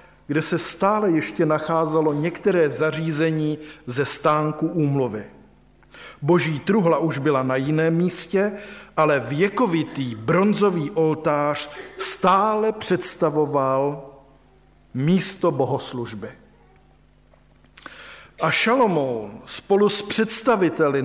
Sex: male